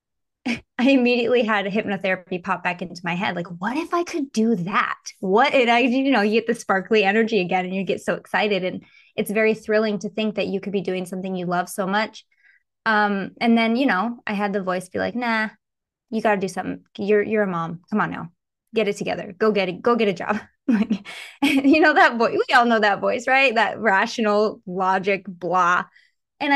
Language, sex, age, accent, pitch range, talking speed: English, female, 20-39, American, 190-235 Hz, 225 wpm